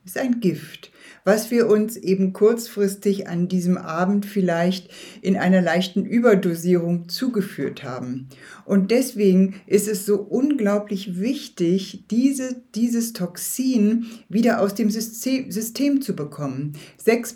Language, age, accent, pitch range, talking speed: German, 60-79, German, 180-220 Hz, 120 wpm